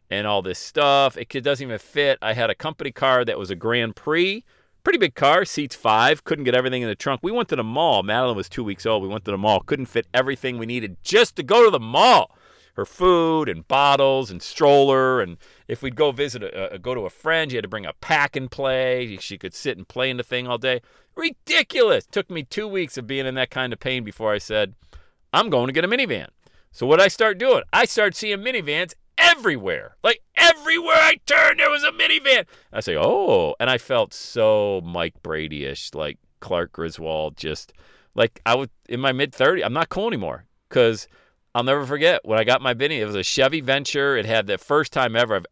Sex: male